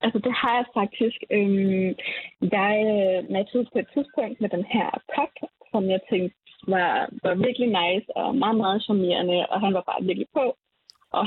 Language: Danish